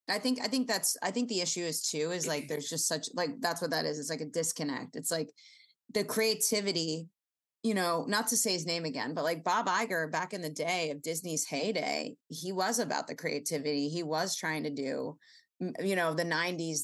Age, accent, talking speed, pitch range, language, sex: 20-39, American, 220 wpm, 155-185 Hz, English, female